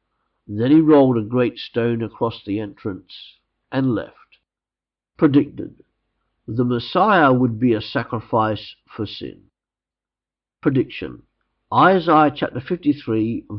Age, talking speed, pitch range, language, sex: 50-69, 105 wpm, 110-140 Hz, English, male